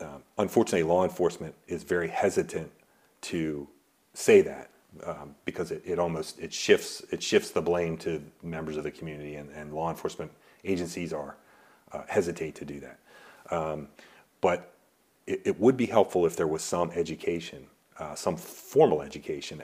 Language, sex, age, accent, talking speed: English, male, 40-59, American, 160 wpm